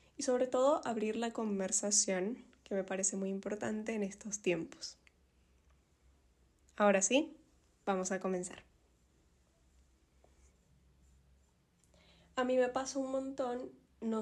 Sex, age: female, 10-29